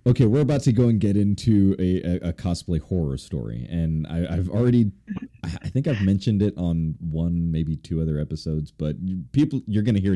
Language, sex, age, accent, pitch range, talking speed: English, male, 20-39, American, 80-100 Hz, 205 wpm